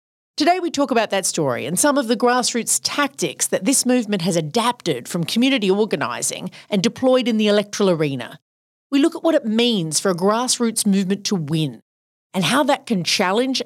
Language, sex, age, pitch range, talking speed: English, female, 40-59, 170-245 Hz, 190 wpm